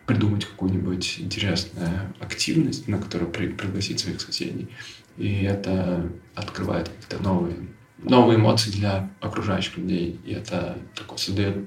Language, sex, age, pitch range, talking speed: Russian, male, 20-39, 95-110 Hz, 115 wpm